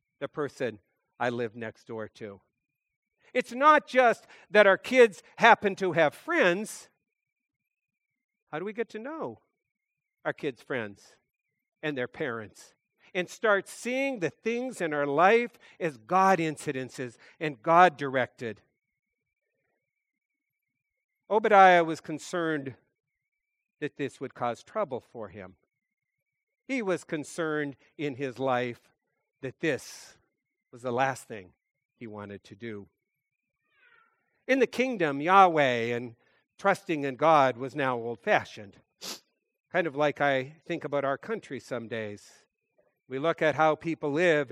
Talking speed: 125 wpm